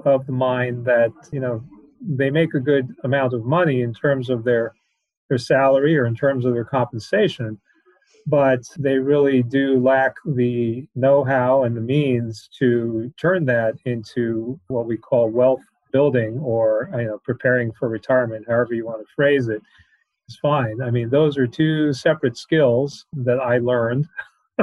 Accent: American